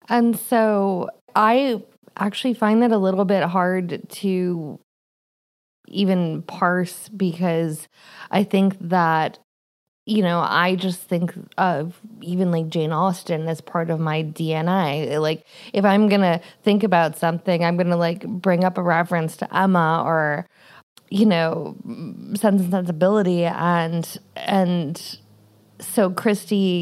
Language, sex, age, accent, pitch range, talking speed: English, female, 20-39, American, 165-210 Hz, 135 wpm